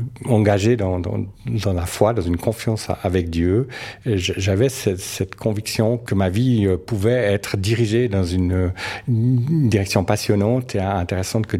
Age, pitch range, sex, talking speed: 50-69, 95-110 Hz, male, 155 wpm